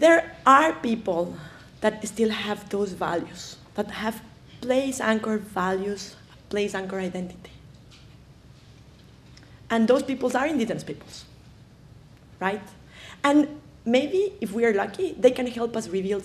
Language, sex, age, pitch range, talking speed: English, female, 30-49, 195-255 Hz, 125 wpm